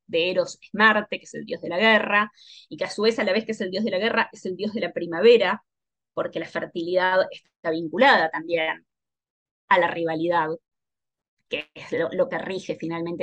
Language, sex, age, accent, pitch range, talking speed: Spanish, female, 20-39, Argentinian, 170-215 Hz, 220 wpm